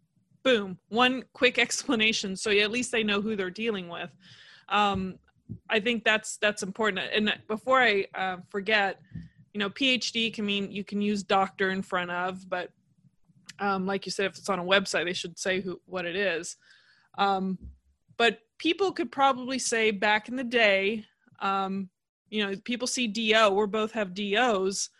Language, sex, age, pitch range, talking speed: English, female, 20-39, 190-225 Hz, 175 wpm